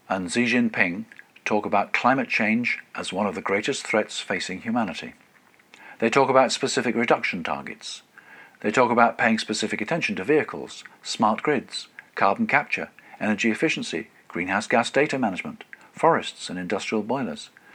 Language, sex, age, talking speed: English, male, 50-69, 145 wpm